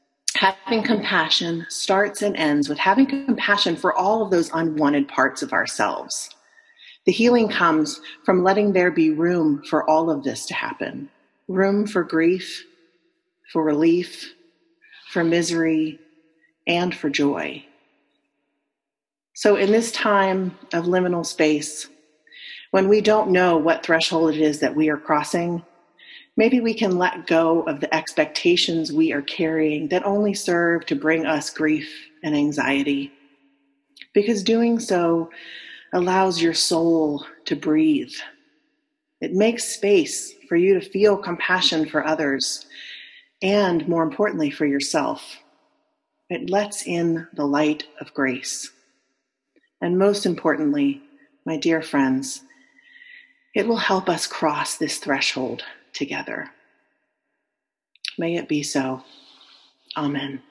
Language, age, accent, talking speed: English, 40-59, American, 125 wpm